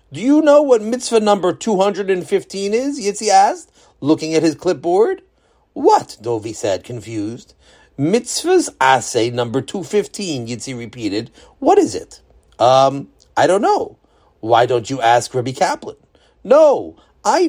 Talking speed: 135 wpm